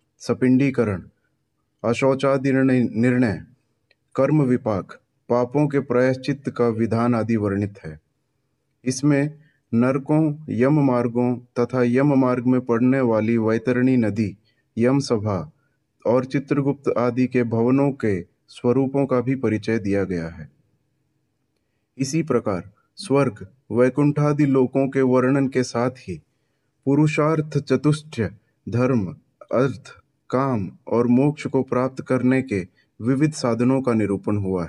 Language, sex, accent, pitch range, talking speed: Hindi, male, native, 115-135 Hz, 115 wpm